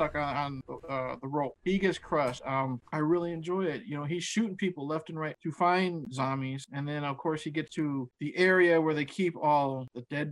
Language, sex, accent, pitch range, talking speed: English, male, American, 145-190 Hz, 225 wpm